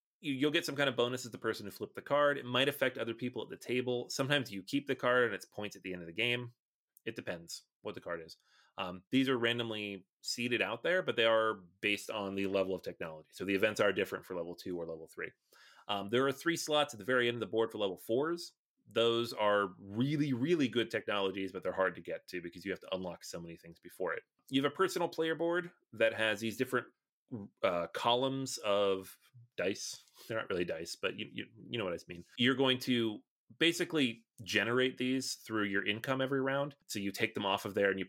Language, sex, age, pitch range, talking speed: English, male, 30-49, 100-130 Hz, 230 wpm